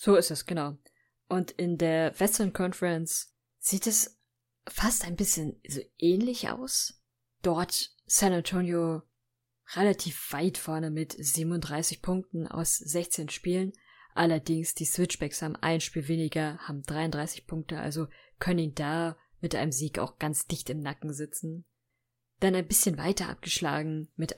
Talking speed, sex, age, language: 145 wpm, female, 20-39, German